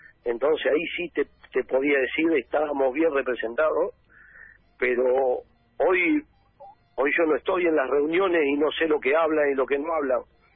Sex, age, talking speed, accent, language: male, 50-69, 170 wpm, Argentinian, Spanish